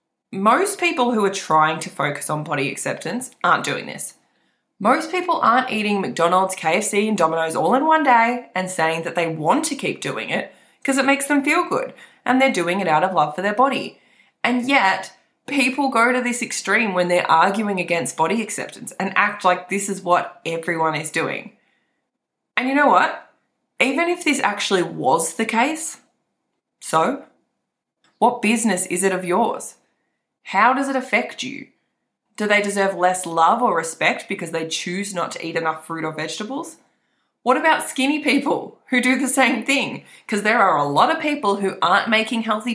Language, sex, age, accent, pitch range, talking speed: English, female, 20-39, Australian, 180-260 Hz, 185 wpm